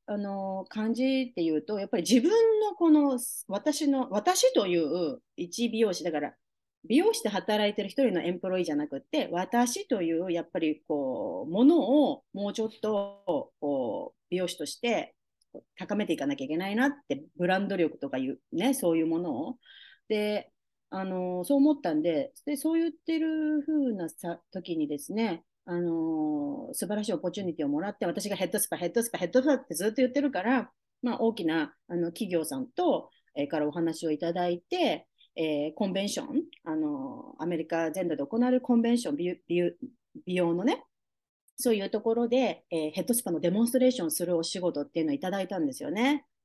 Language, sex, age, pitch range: Japanese, female, 40-59, 175-260 Hz